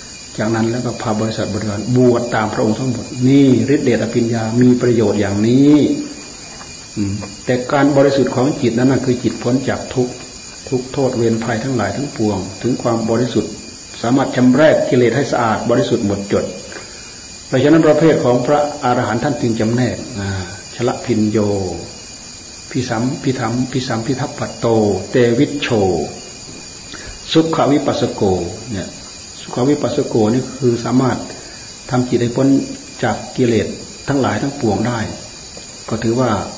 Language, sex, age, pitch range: Thai, male, 60-79, 110-130 Hz